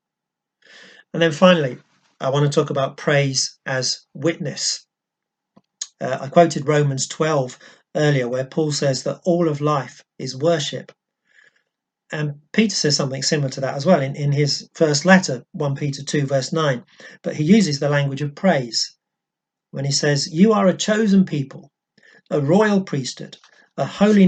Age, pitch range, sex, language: 40-59, 145-185 Hz, male, English